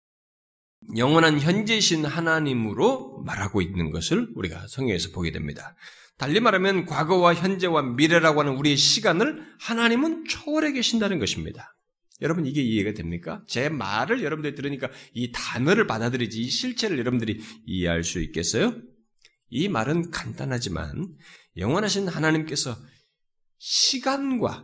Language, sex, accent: Korean, male, native